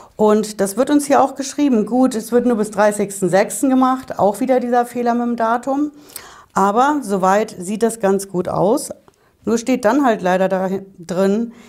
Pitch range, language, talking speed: 180-235 Hz, German, 180 wpm